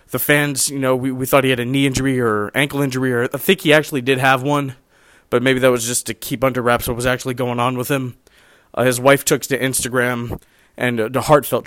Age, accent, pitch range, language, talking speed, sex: 20-39, American, 120-140 Hz, English, 250 wpm, male